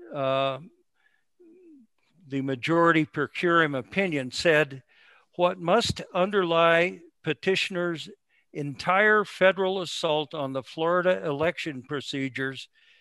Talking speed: 90 wpm